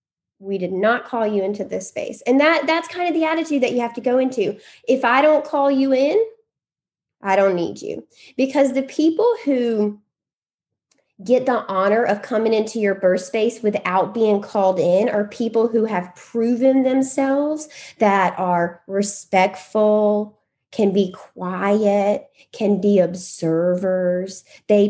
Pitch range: 185-255 Hz